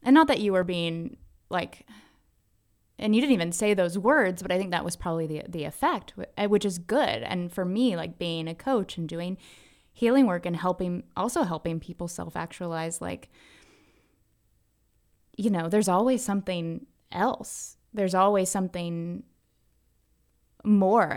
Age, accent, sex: 20-39, American, female